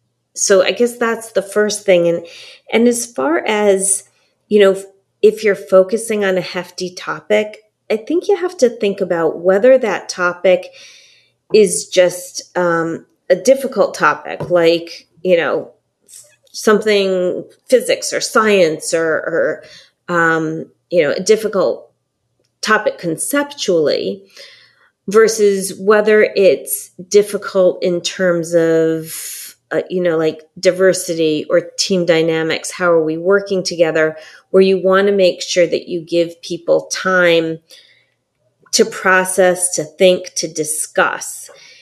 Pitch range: 175-215 Hz